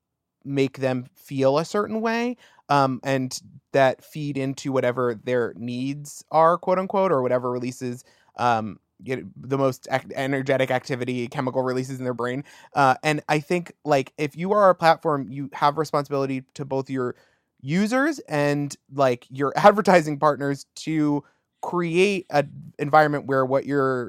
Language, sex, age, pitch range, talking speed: English, male, 20-39, 125-155 Hz, 155 wpm